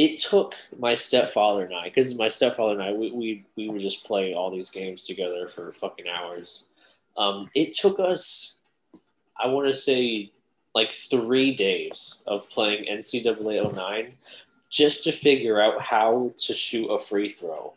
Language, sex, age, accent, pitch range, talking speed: English, male, 20-39, American, 100-135 Hz, 160 wpm